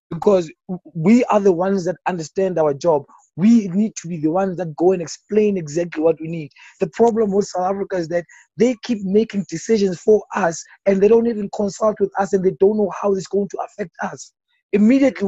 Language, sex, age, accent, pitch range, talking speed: English, male, 20-39, South African, 180-225 Hz, 210 wpm